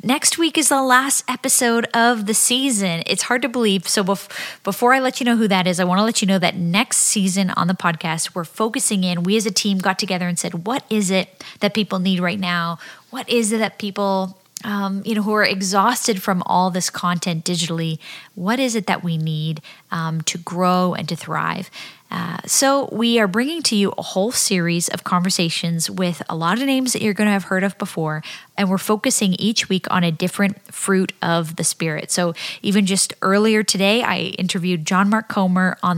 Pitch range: 175-220 Hz